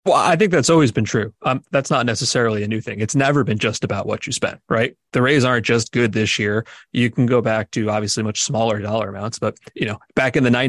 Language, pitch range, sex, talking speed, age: English, 110-130 Hz, male, 260 wpm, 30-49